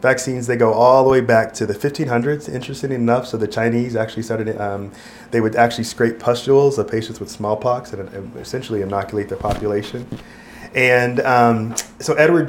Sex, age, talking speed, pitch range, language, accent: male, 30-49, 175 wpm, 110-125 Hz, English, American